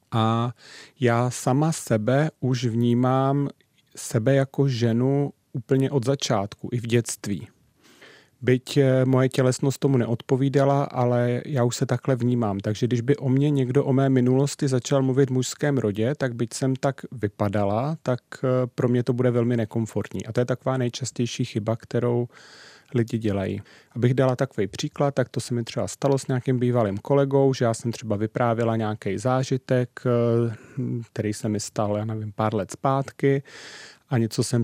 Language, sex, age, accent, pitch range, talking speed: Czech, male, 40-59, native, 115-135 Hz, 165 wpm